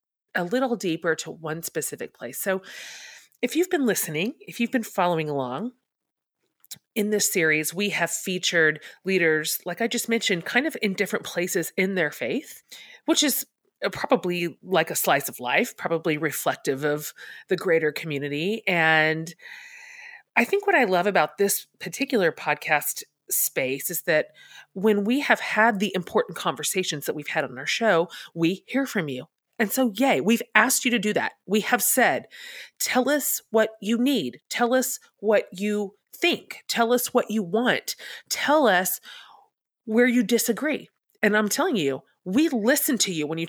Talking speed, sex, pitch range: 170 wpm, female, 170-250 Hz